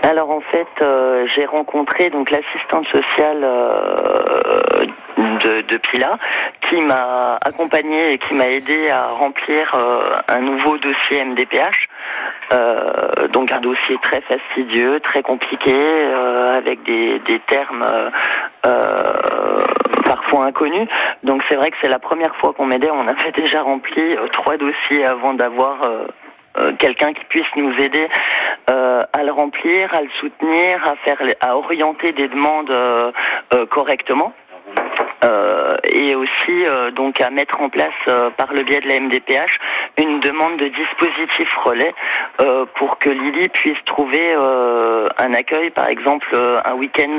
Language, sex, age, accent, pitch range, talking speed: French, male, 40-59, French, 130-160 Hz, 155 wpm